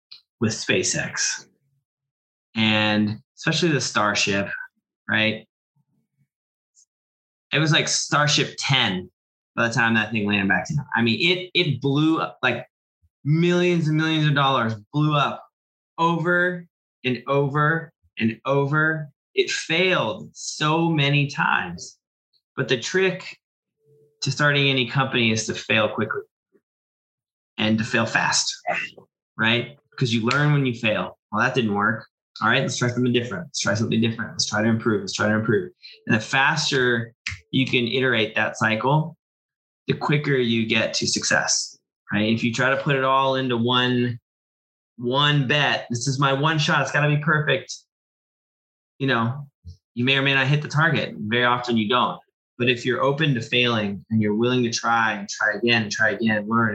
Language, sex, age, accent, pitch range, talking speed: English, male, 20-39, American, 110-145 Hz, 165 wpm